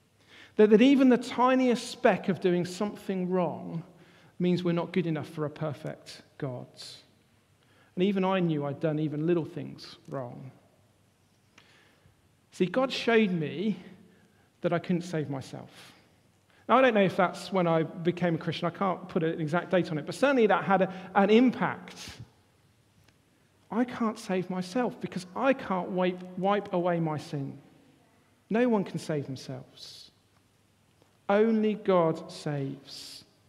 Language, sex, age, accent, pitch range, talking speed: English, male, 50-69, British, 160-215 Hz, 145 wpm